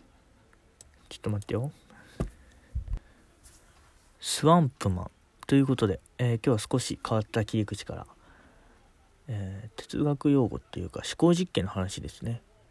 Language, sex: Japanese, male